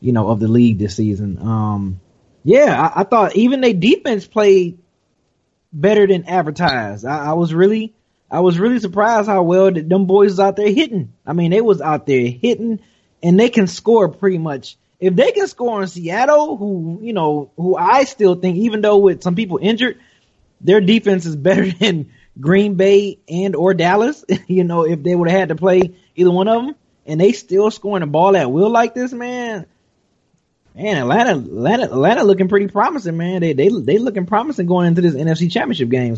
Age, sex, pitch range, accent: 20-39, male, 150-205 Hz, American